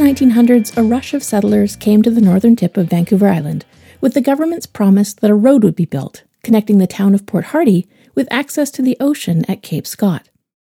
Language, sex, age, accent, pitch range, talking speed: English, female, 40-59, American, 190-260 Hz, 210 wpm